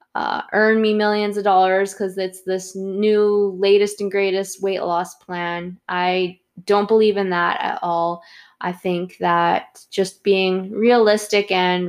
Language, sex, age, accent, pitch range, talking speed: English, female, 20-39, American, 180-215 Hz, 150 wpm